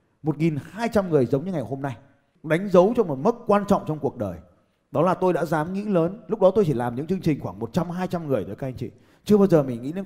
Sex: male